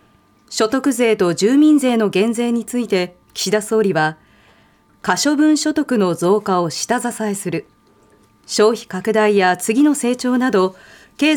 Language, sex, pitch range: Japanese, female, 190-260 Hz